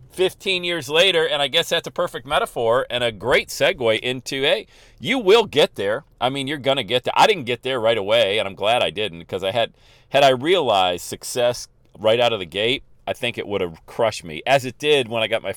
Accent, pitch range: American, 95-135 Hz